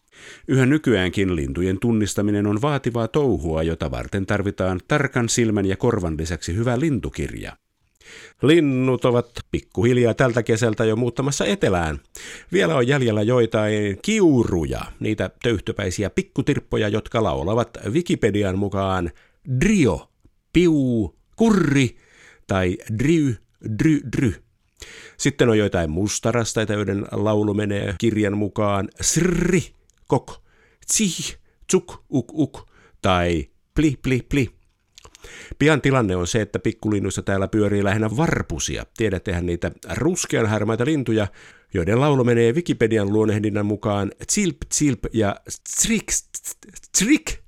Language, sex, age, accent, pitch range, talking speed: Finnish, male, 50-69, native, 100-140 Hz, 110 wpm